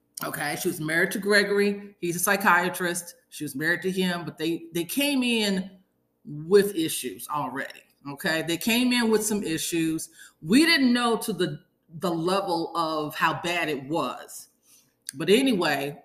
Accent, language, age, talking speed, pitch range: American, English, 40-59, 160 wpm, 155-195 Hz